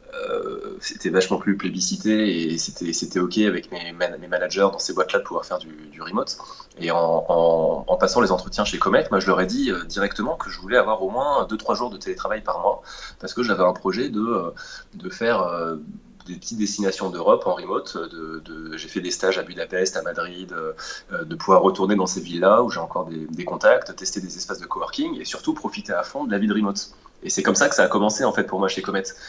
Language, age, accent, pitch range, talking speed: French, 20-39, French, 85-125 Hz, 235 wpm